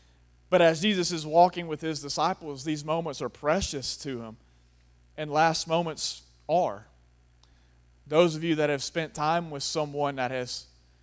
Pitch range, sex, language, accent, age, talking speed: 140-190 Hz, male, English, American, 30-49, 160 wpm